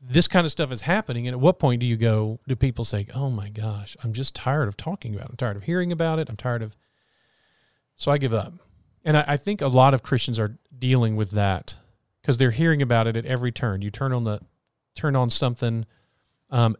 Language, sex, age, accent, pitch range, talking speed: English, male, 40-59, American, 115-130 Hz, 240 wpm